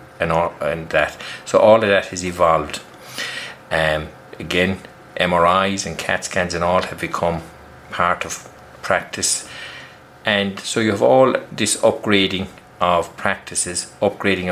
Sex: male